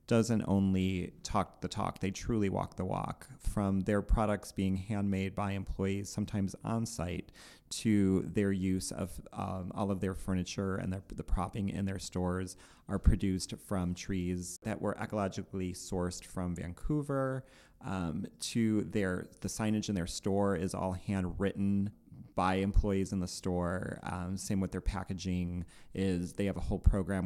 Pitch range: 90-100 Hz